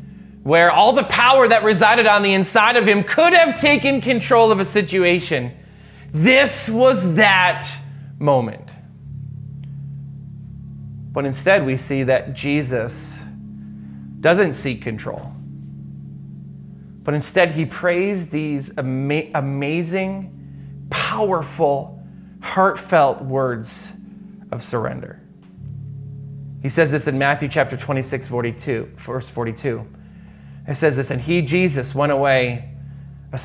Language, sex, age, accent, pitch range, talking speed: English, male, 30-49, American, 135-200 Hz, 110 wpm